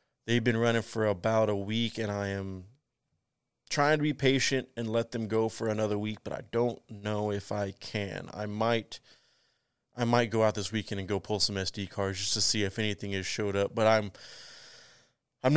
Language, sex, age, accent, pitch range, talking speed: English, male, 30-49, American, 100-115 Hz, 205 wpm